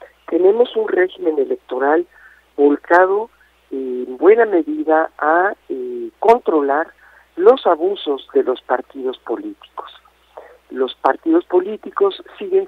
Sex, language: male, Spanish